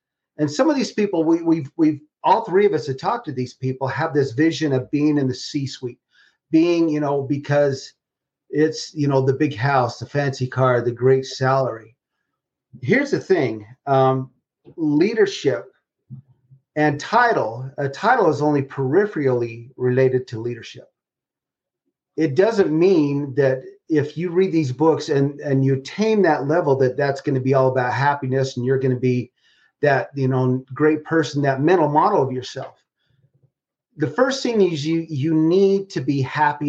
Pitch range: 130-160 Hz